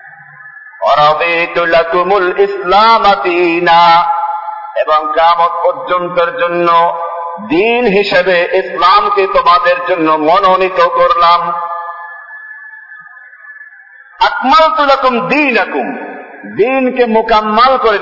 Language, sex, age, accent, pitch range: Bengali, male, 50-69, native, 175-240 Hz